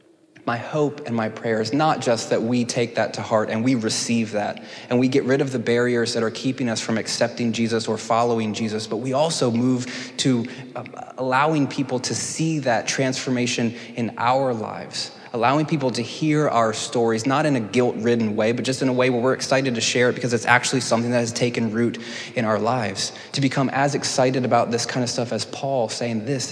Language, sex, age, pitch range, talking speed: English, male, 20-39, 110-130 Hz, 215 wpm